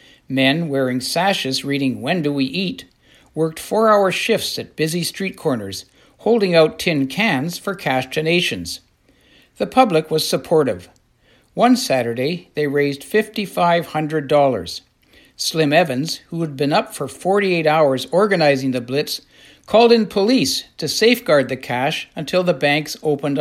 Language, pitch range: English, 130-175 Hz